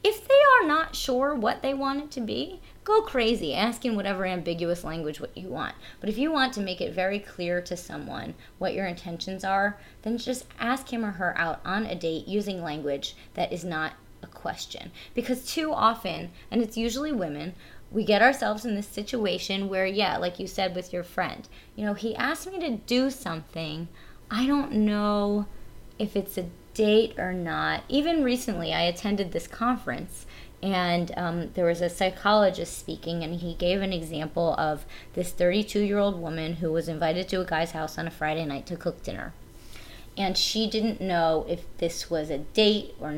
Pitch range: 170-225 Hz